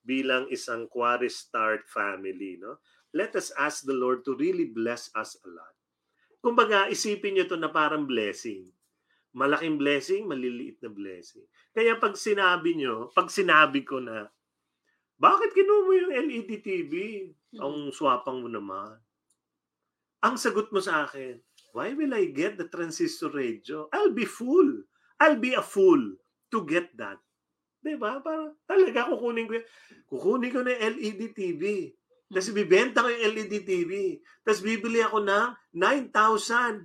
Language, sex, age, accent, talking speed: English, male, 30-49, Filipino, 145 wpm